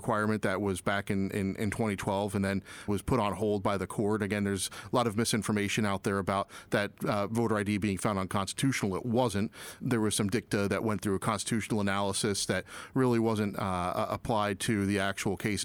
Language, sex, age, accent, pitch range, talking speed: English, male, 40-59, American, 105-125 Hz, 205 wpm